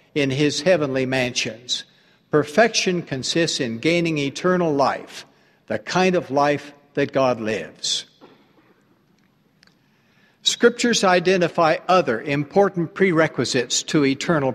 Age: 60-79